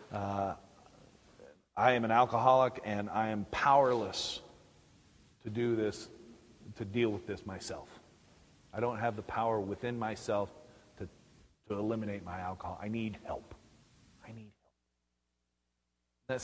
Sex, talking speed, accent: male, 130 wpm, American